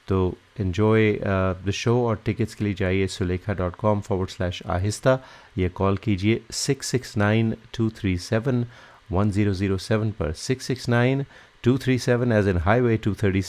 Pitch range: 95-115 Hz